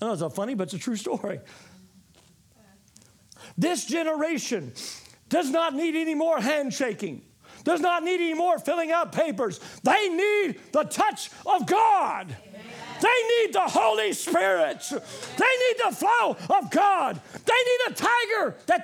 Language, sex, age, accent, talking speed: English, male, 50-69, American, 155 wpm